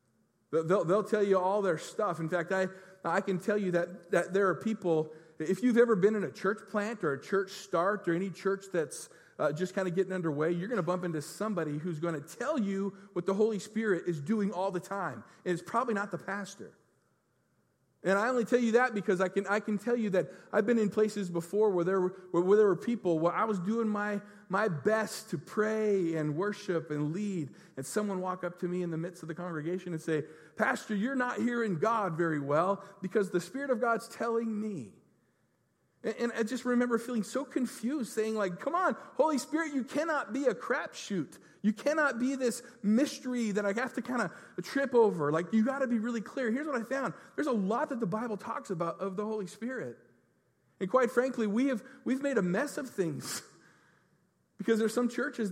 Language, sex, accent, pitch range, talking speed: English, male, American, 180-235 Hz, 220 wpm